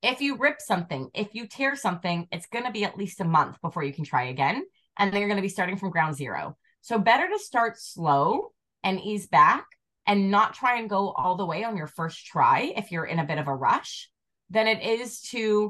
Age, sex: 20-39, female